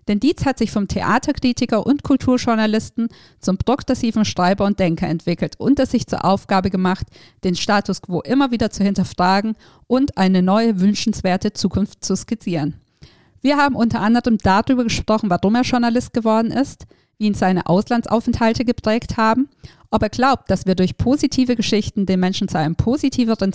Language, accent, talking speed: German, German, 165 wpm